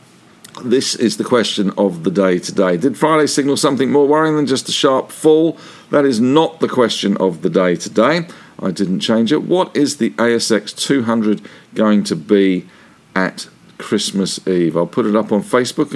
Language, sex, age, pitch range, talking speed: English, male, 50-69, 95-140 Hz, 185 wpm